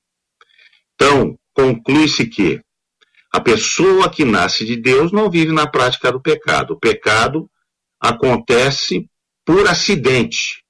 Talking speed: 110 wpm